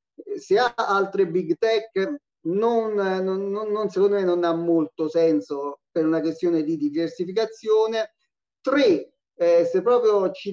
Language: Italian